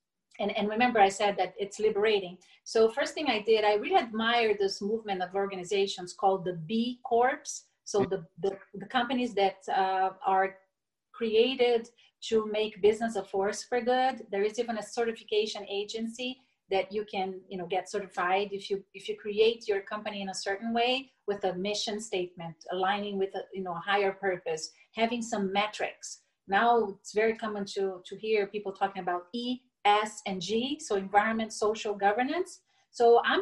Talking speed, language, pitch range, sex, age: 180 wpm, English, 195-240 Hz, female, 40-59